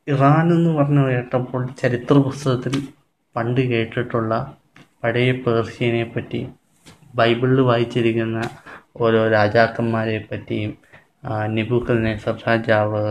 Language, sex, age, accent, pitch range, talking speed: Malayalam, male, 20-39, native, 115-130 Hz, 80 wpm